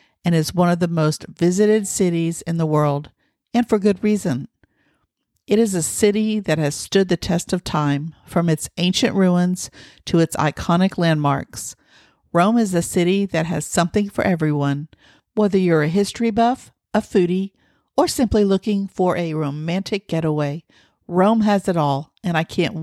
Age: 50-69